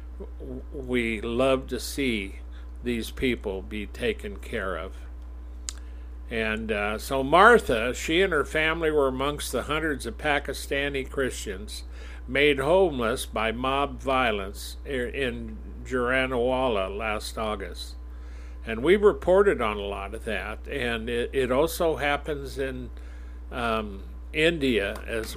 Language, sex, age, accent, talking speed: English, male, 50-69, American, 120 wpm